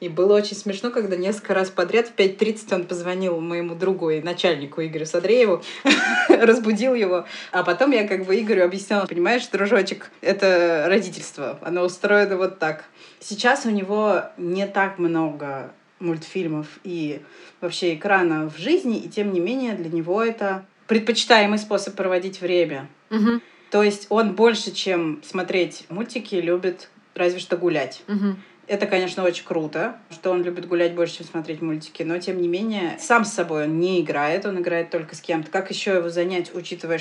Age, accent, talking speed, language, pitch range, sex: 20-39, native, 165 wpm, Russian, 165-195 Hz, female